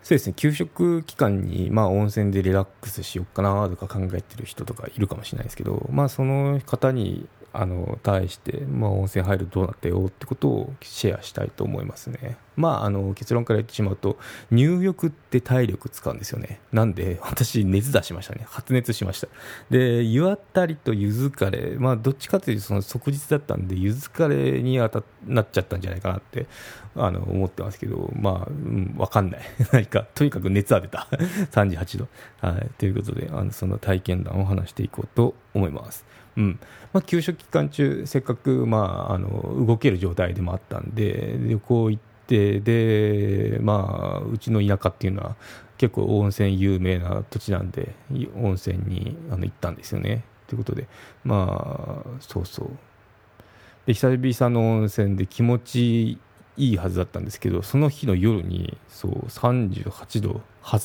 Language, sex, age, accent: Japanese, male, 20-39, native